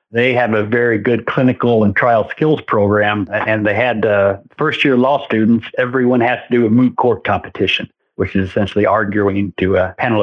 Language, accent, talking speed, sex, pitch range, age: English, American, 190 wpm, male, 105-120 Hz, 60-79